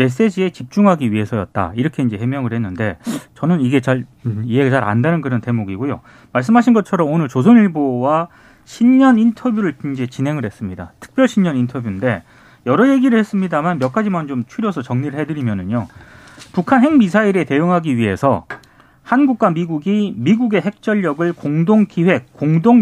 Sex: male